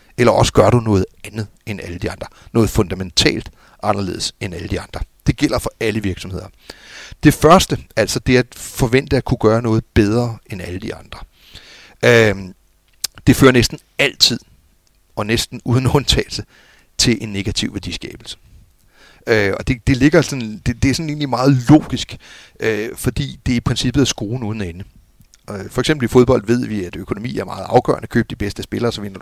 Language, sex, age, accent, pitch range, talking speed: Danish, male, 60-79, native, 105-130 Hz, 175 wpm